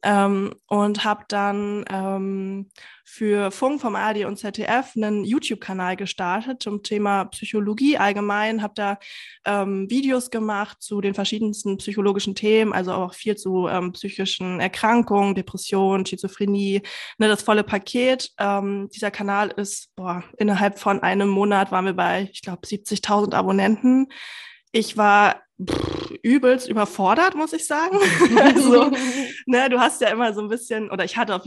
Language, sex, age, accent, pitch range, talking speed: German, female, 20-39, German, 195-225 Hz, 145 wpm